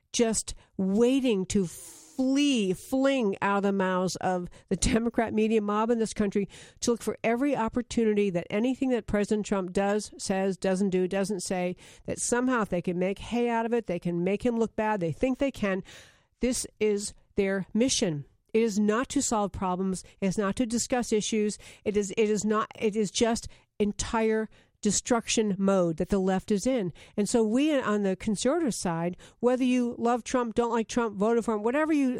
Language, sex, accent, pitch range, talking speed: English, female, American, 190-240 Hz, 195 wpm